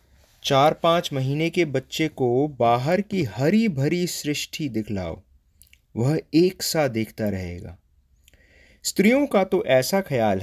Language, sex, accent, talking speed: English, male, Indian, 125 wpm